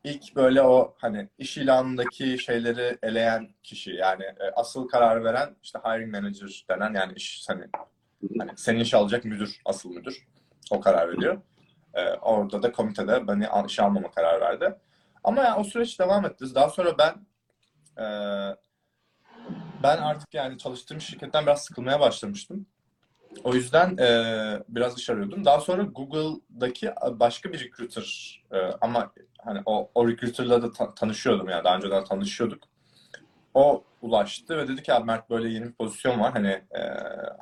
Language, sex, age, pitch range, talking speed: English, male, 30-49, 105-145 Hz, 150 wpm